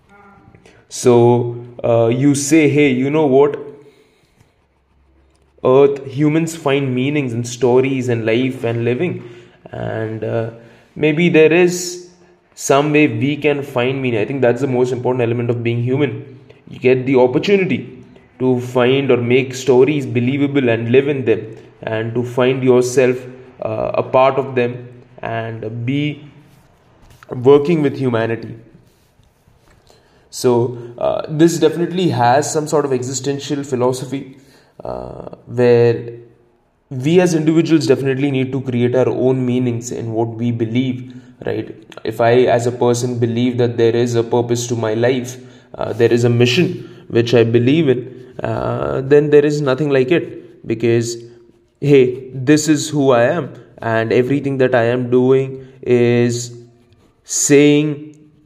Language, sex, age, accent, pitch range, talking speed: English, male, 20-39, Indian, 120-145 Hz, 145 wpm